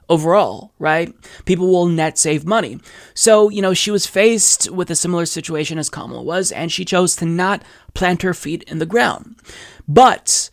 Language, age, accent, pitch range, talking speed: English, 20-39, American, 160-195 Hz, 180 wpm